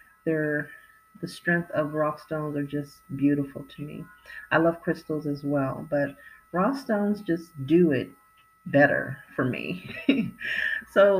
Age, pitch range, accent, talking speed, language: 40-59, 160-230 Hz, American, 140 wpm, English